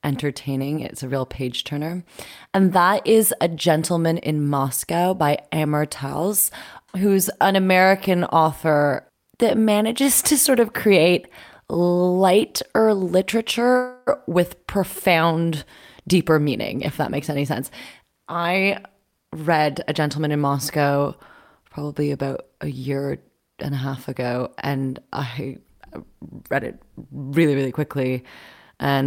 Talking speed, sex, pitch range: 120 wpm, female, 140-175 Hz